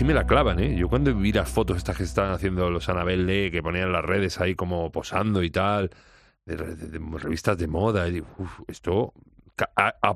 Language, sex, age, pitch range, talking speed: Spanish, male, 40-59, 85-100 Hz, 225 wpm